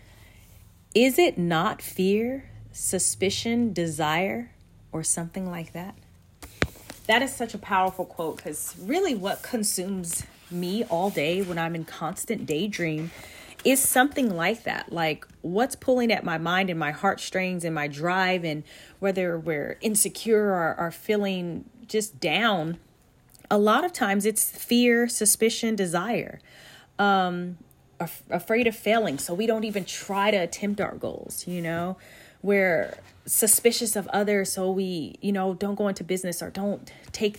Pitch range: 165-210 Hz